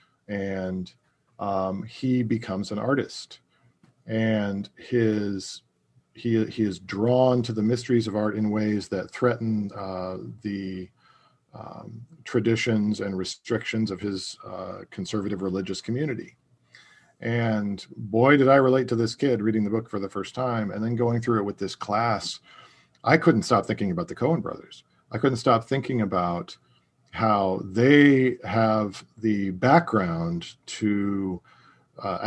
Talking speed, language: 140 wpm, English